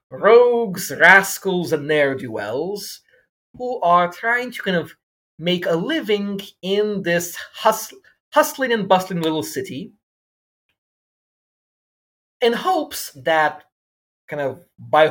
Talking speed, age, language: 115 wpm, 30-49, English